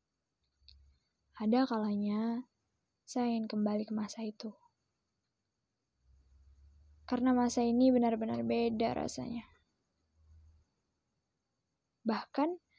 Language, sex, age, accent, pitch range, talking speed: Indonesian, female, 20-39, native, 210-235 Hz, 70 wpm